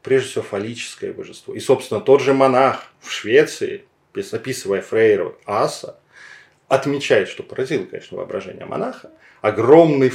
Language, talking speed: Russian, 125 wpm